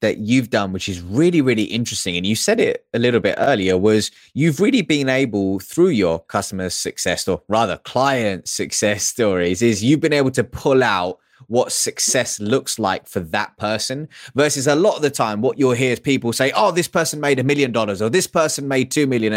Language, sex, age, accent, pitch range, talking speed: English, male, 20-39, British, 105-145 Hz, 215 wpm